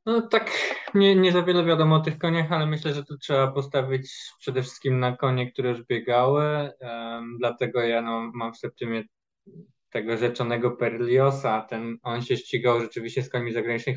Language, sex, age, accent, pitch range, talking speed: Polish, male, 20-39, native, 115-135 Hz, 180 wpm